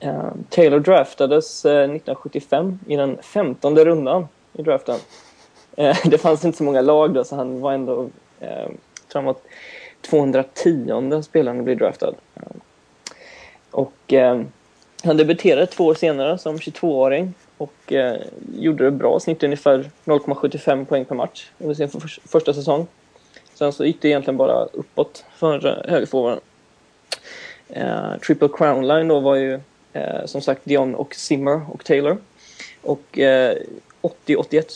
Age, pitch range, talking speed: 20-39, 140-160 Hz, 135 wpm